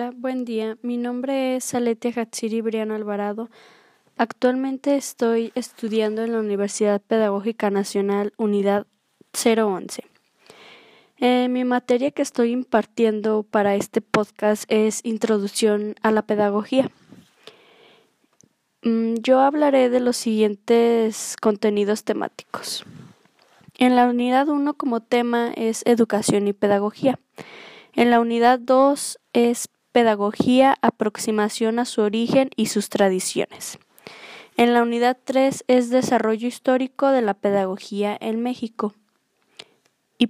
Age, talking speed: 20-39, 115 wpm